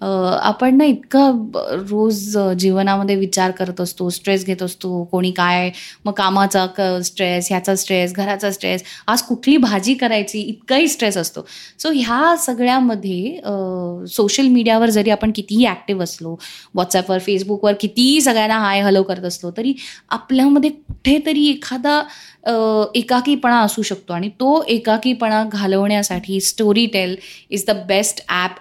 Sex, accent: female, native